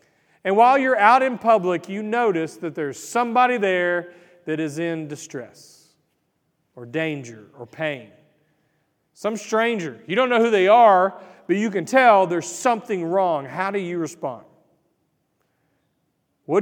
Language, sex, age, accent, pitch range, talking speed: English, male, 40-59, American, 160-210 Hz, 145 wpm